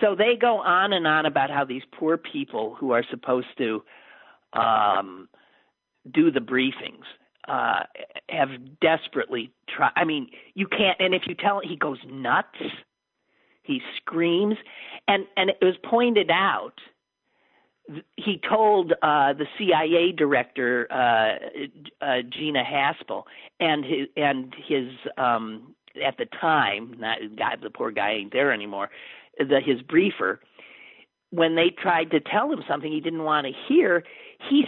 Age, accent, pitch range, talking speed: 50-69, American, 140-230 Hz, 150 wpm